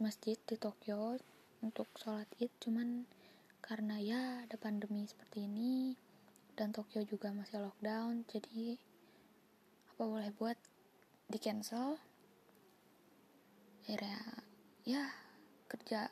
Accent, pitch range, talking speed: native, 205-230 Hz, 95 wpm